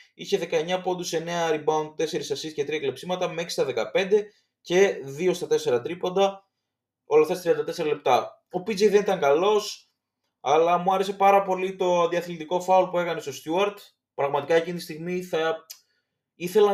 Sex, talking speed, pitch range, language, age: male, 165 wpm, 145-210 Hz, Greek, 20-39